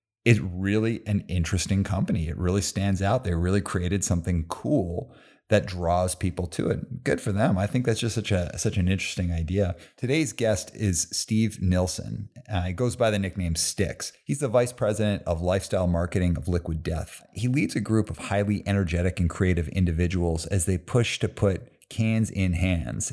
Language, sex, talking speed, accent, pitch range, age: English, male, 185 wpm, American, 85-105 Hz, 30-49